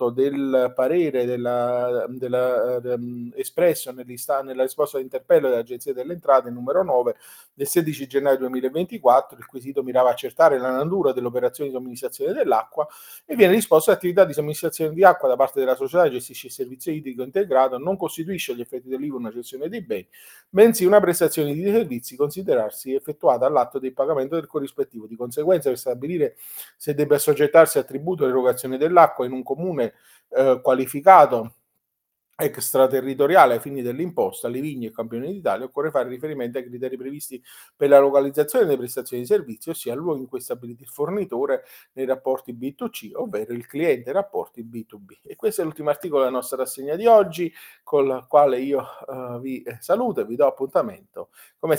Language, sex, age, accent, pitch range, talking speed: Italian, male, 40-59, native, 125-175 Hz, 175 wpm